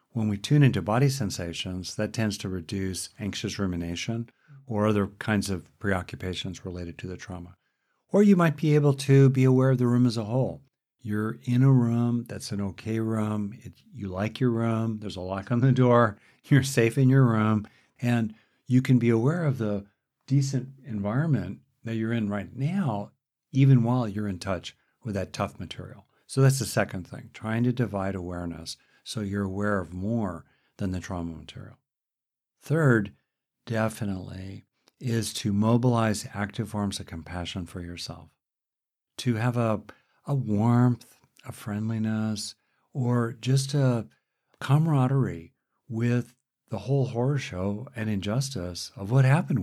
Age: 60-79